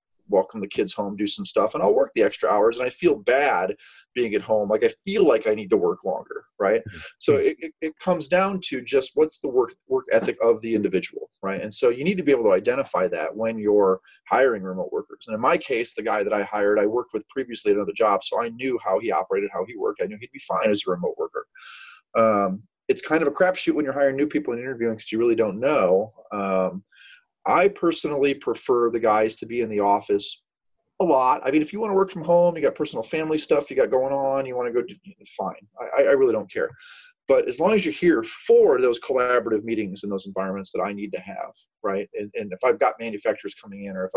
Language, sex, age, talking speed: English, male, 30-49, 250 wpm